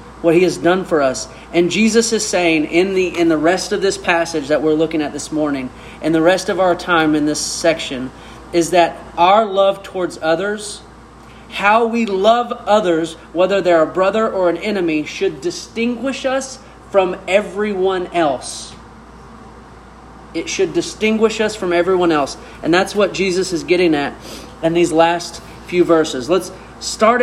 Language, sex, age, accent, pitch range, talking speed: English, male, 30-49, American, 165-200 Hz, 170 wpm